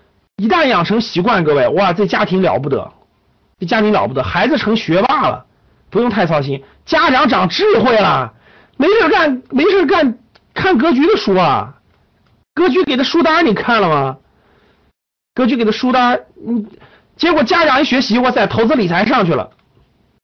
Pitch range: 150-245 Hz